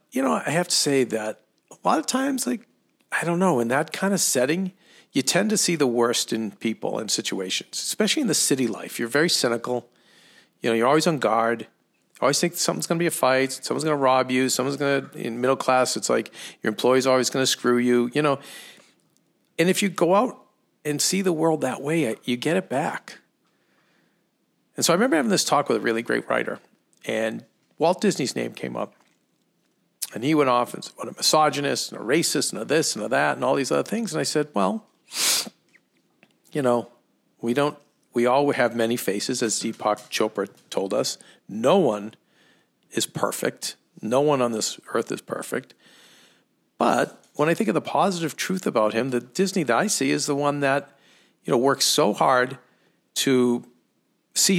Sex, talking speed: male, 205 wpm